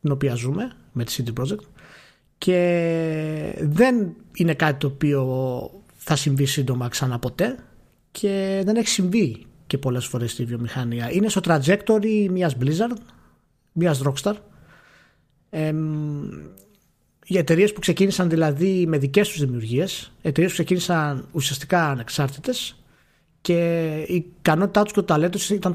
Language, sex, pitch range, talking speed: Greek, male, 135-195 Hz, 135 wpm